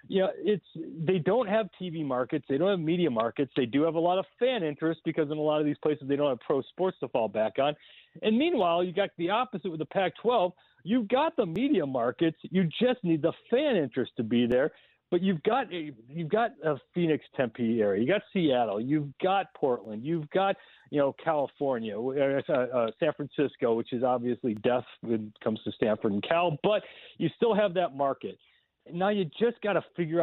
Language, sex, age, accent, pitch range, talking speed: English, male, 40-59, American, 140-195 Hz, 215 wpm